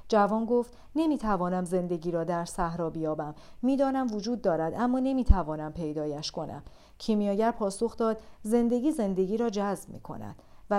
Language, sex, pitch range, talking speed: Persian, female, 180-230 Hz, 135 wpm